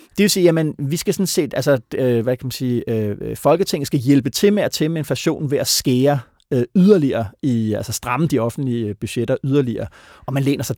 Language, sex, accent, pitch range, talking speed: Danish, male, native, 115-155 Hz, 155 wpm